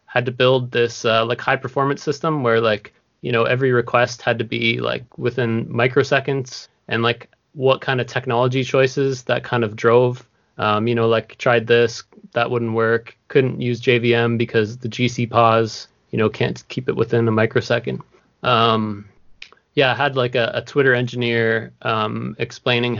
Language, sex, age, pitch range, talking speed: English, male, 20-39, 115-135 Hz, 175 wpm